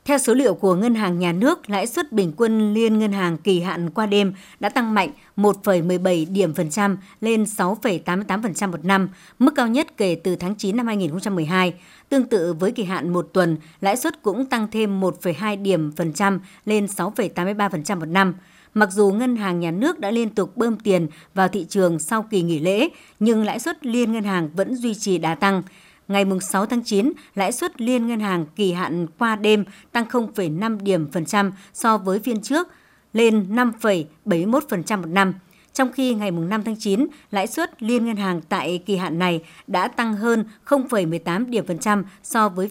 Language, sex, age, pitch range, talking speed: Vietnamese, male, 60-79, 180-225 Hz, 195 wpm